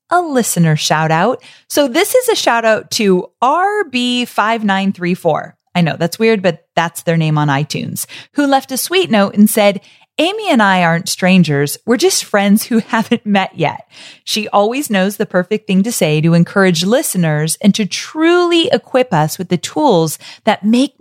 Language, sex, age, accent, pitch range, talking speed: English, female, 30-49, American, 175-245 Hz, 175 wpm